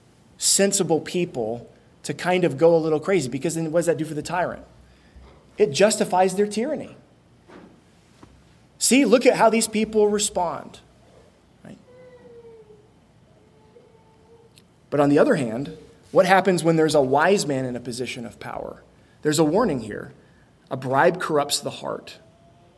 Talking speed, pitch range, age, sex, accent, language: 145 wpm, 135-180 Hz, 20-39, male, American, English